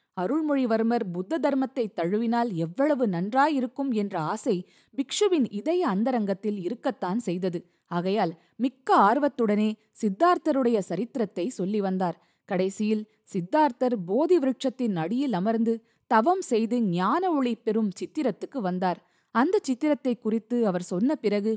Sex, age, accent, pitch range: female, 20-39, native, 175-240 Hz